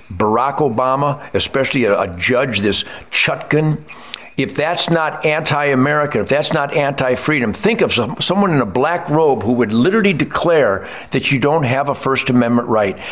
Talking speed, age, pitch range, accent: 160 wpm, 60-79, 130-170 Hz, American